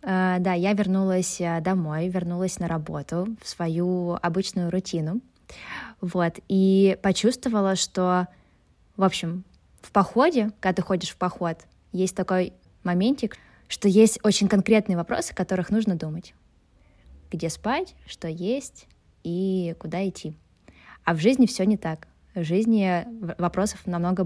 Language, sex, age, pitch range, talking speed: Russian, female, 20-39, 170-200 Hz, 130 wpm